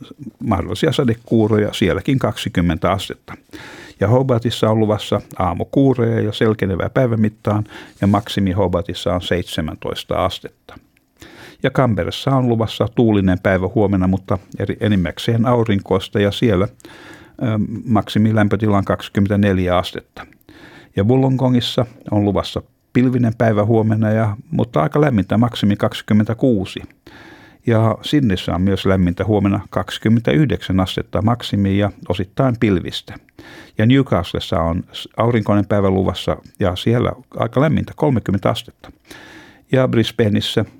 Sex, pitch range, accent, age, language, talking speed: male, 95-115 Hz, native, 60-79, Finnish, 110 wpm